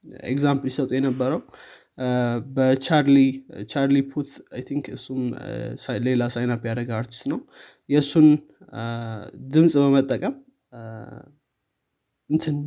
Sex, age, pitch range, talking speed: male, 20-39, 125-145 Hz, 80 wpm